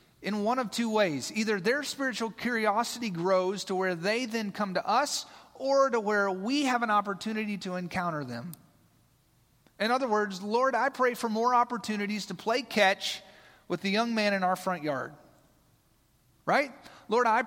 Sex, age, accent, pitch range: male, 30-49, American, 165-225 Hz